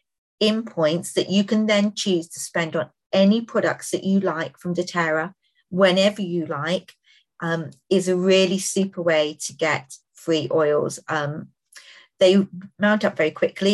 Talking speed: 155 wpm